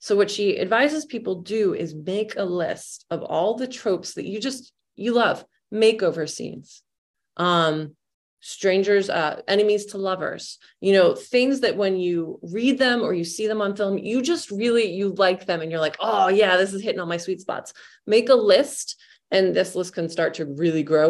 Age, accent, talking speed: 20-39, American, 200 wpm